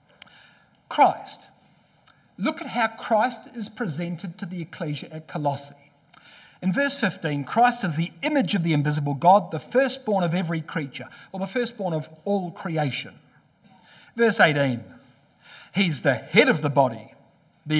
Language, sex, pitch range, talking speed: English, male, 150-215 Hz, 145 wpm